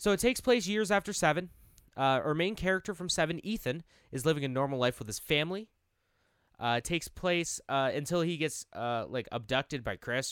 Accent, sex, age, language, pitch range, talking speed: American, male, 20-39, English, 120-180 Hz, 205 wpm